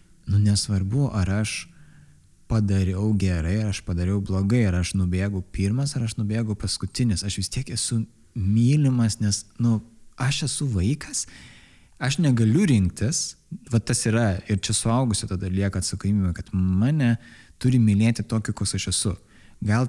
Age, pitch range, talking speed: 20-39, 95-115 Hz, 150 wpm